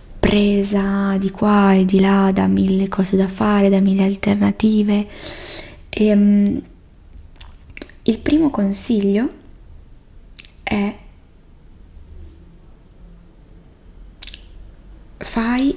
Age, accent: 20-39, native